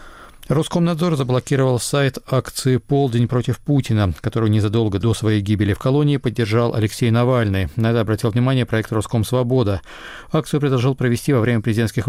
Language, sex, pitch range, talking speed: Russian, male, 110-130 Hz, 140 wpm